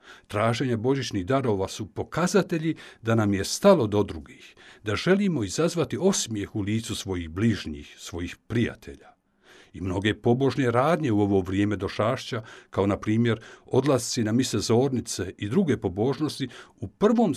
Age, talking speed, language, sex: 60-79, 140 wpm, Croatian, male